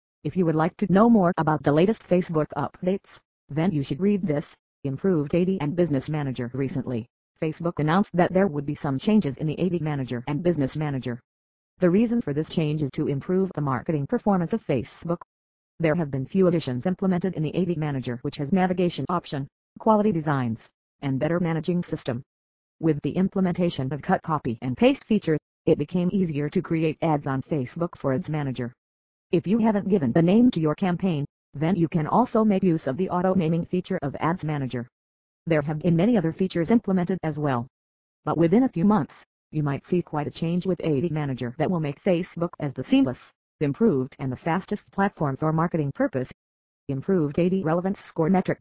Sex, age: female, 40-59